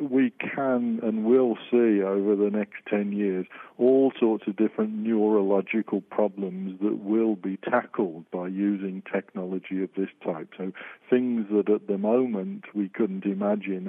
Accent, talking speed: British, 150 wpm